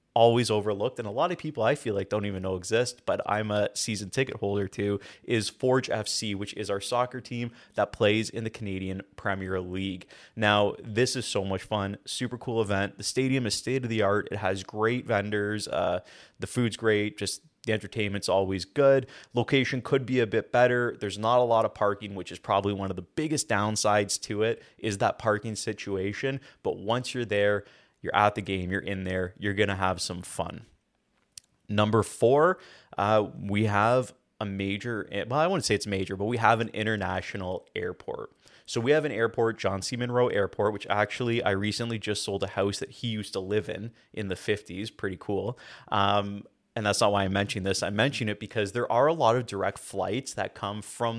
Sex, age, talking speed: male, 20-39, 205 wpm